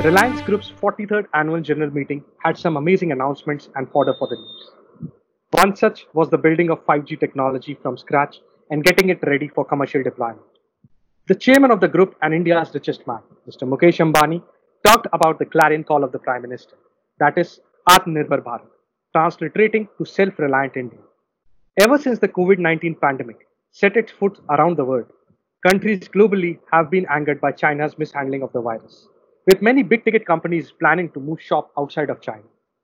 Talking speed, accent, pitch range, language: 175 wpm, Indian, 145-190 Hz, English